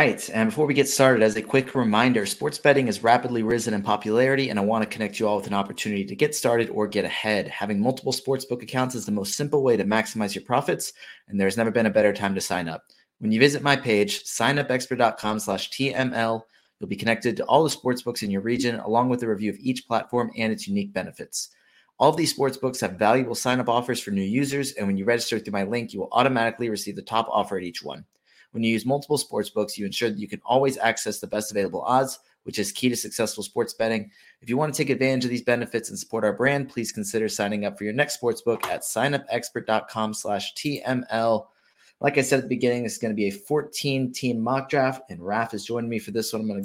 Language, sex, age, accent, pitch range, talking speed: English, male, 30-49, American, 110-130 Hz, 240 wpm